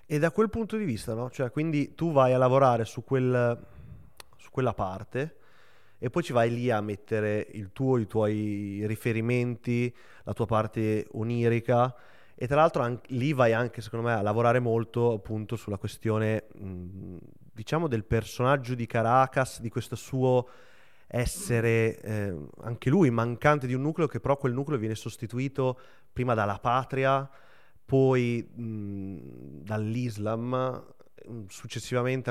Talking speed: 145 wpm